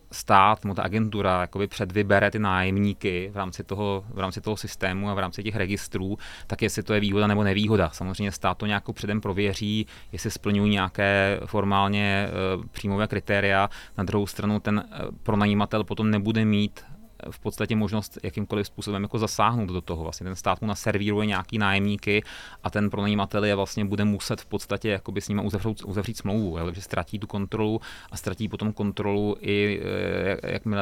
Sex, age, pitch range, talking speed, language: male, 30-49, 95-105 Hz, 170 wpm, Slovak